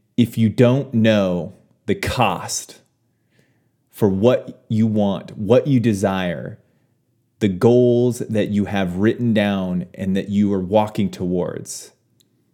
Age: 30-49